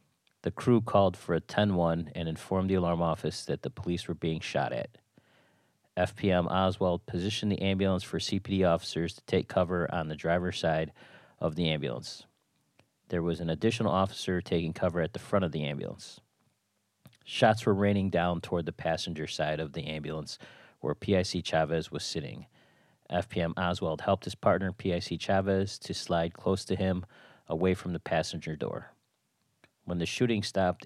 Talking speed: 165 wpm